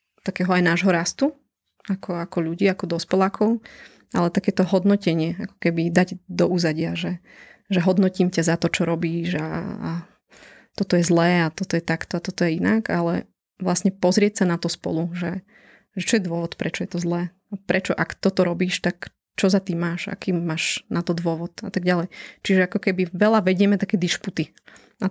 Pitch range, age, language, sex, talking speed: 175-195 Hz, 20-39, Slovak, female, 190 wpm